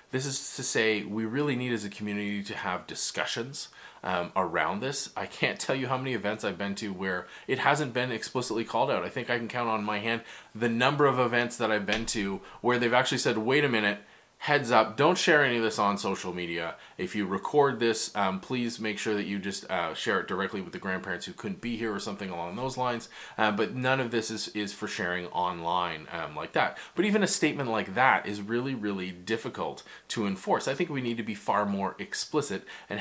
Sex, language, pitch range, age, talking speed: male, English, 100-125 Hz, 20-39, 235 wpm